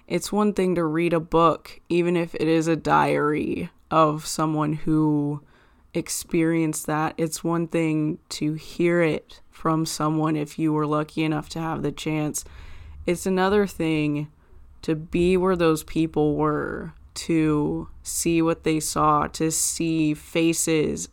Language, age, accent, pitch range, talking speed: English, 20-39, American, 150-170 Hz, 150 wpm